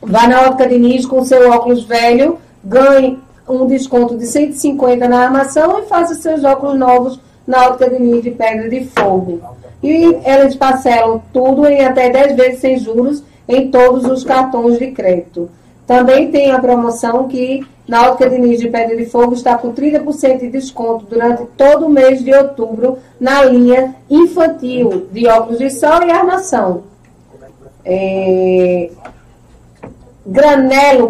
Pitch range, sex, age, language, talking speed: 230-265 Hz, female, 40-59, Portuguese, 155 wpm